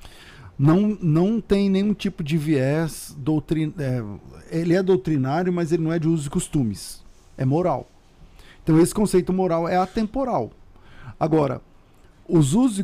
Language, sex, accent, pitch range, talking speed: Portuguese, male, Brazilian, 130-180 Hz, 145 wpm